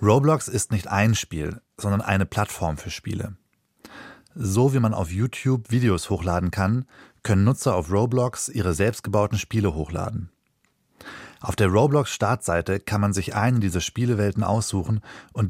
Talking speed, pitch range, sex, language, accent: 145 wpm, 95-125 Hz, male, German, German